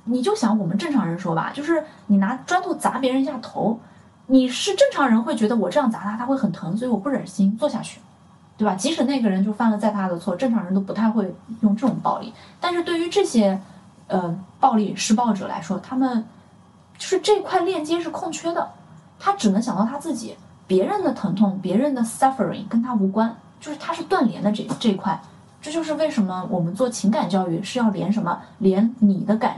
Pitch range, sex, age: 195-265 Hz, female, 20-39